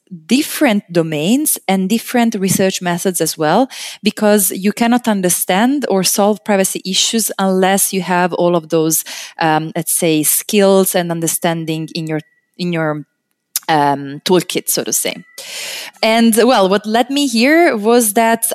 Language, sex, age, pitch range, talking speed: French, female, 20-39, 165-215 Hz, 145 wpm